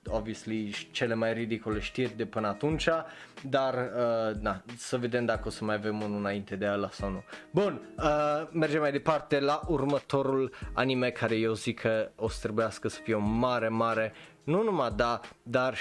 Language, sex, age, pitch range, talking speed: Romanian, male, 20-39, 115-140 Hz, 180 wpm